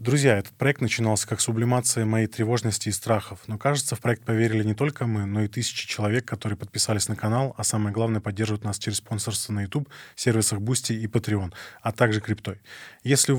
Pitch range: 110-125 Hz